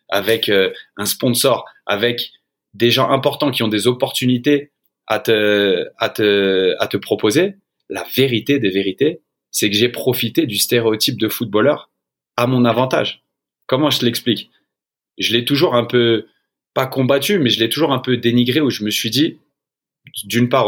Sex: male